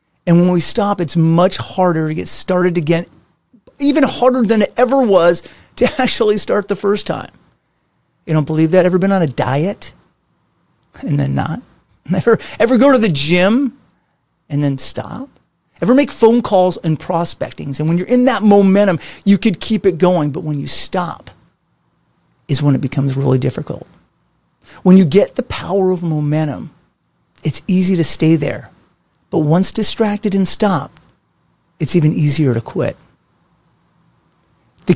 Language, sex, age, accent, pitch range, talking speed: English, male, 40-59, American, 150-200 Hz, 160 wpm